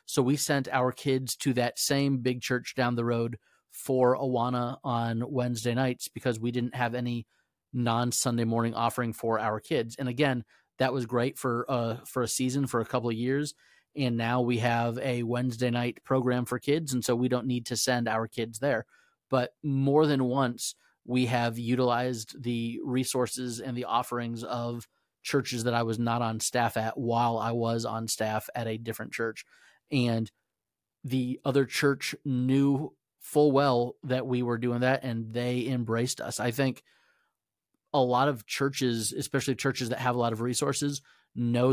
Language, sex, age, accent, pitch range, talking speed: English, male, 30-49, American, 115-130 Hz, 180 wpm